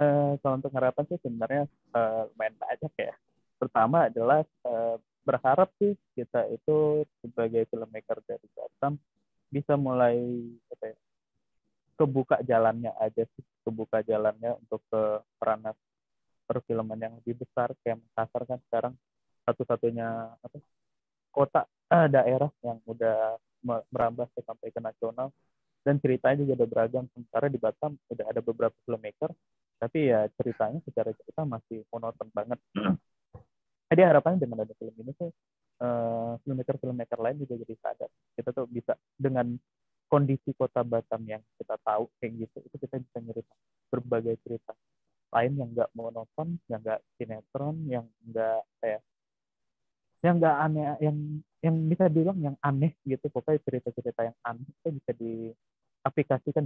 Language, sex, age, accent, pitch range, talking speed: Indonesian, male, 20-39, native, 115-140 Hz, 140 wpm